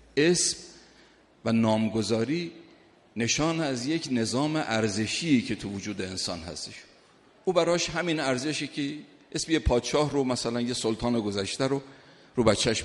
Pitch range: 110-155 Hz